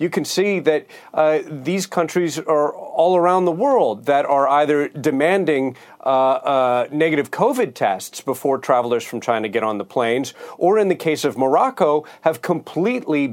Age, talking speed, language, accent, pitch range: 40-59, 165 wpm, English, American, 135-175 Hz